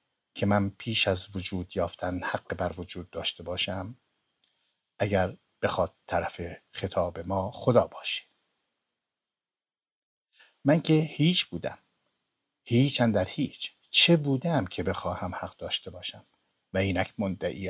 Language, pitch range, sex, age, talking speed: Persian, 95-125 Hz, male, 60-79, 120 wpm